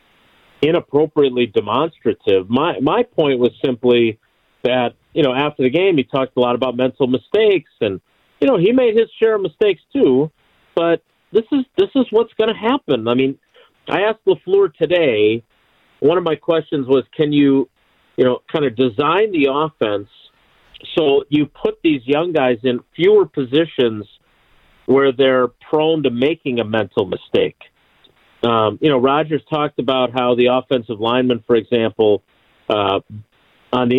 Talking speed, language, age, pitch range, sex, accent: 160 wpm, English, 50-69, 125-175 Hz, male, American